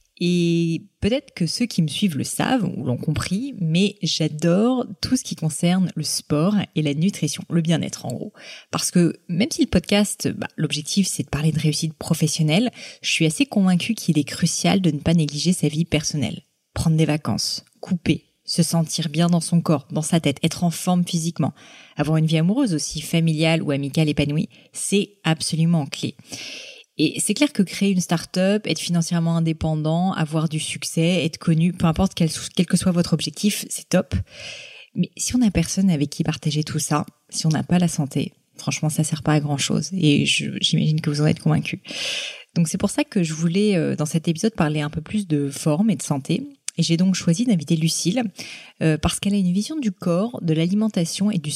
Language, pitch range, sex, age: French, 155-195 Hz, female, 20-39